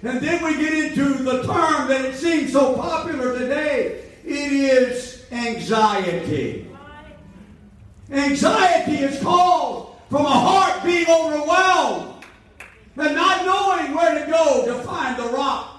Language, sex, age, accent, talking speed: English, male, 50-69, American, 130 wpm